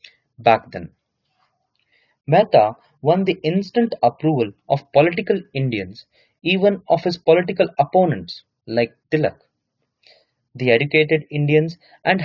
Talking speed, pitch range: 105 wpm, 130-180 Hz